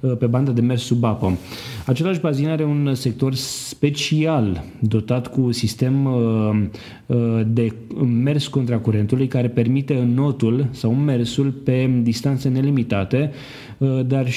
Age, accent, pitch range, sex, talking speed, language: 30-49, native, 115-135 Hz, male, 115 wpm, Romanian